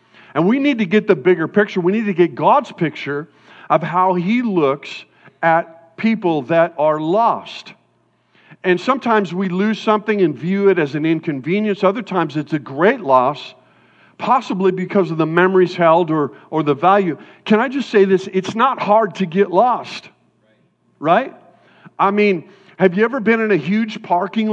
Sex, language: male, English